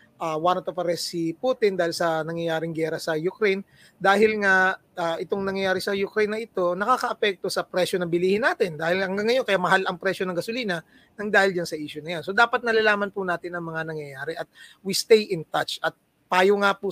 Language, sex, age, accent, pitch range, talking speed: Filipino, male, 20-39, native, 170-205 Hz, 210 wpm